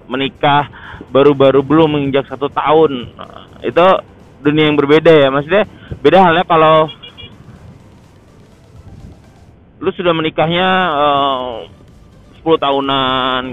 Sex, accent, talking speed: male, native, 100 wpm